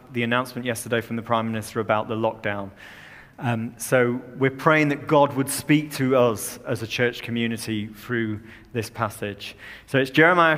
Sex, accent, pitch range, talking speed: male, British, 115-140 Hz, 170 wpm